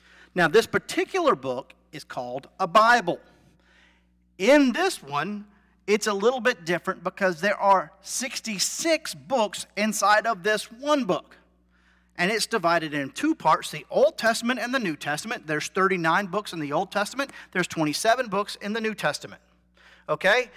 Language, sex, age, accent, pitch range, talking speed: English, male, 40-59, American, 145-225 Hz, 160 wpm